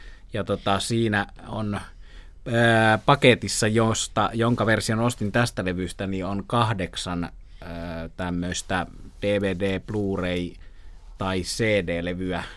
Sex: male